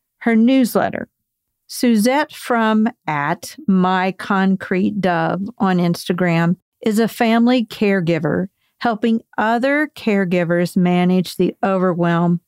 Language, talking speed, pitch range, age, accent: English, 90 wpm, 180-225 Hz, 50-69, American